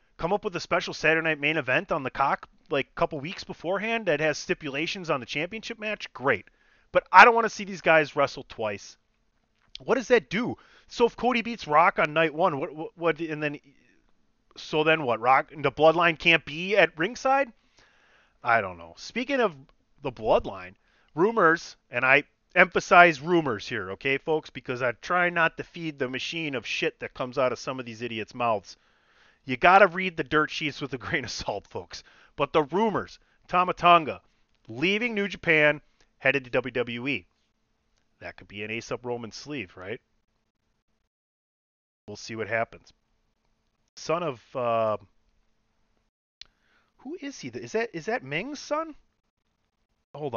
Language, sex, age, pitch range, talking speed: English, male, 30-49, 125-180 Hz, 175 wpm